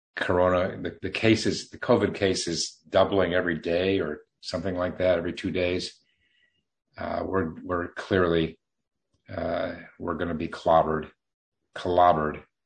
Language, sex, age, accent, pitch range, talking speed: English, male, 50-69, American, 80-95 Hz, 135 wpm